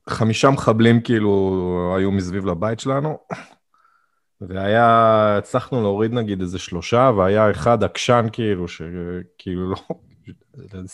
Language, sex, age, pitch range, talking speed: Hebrew, male, 30-49, 100-145 Hz, 105 wpm